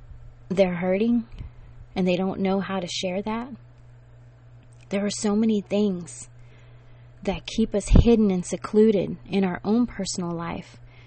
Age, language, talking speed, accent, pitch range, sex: 30-49, English, 140 wpm, American, 120-205 Hz, female